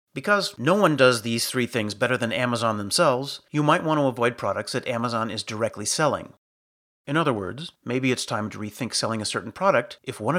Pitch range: 105-140 Hz